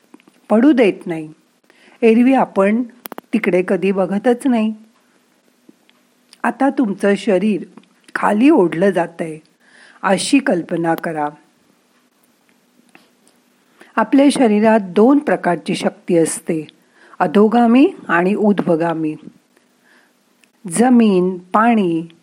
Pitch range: 180-245 Hz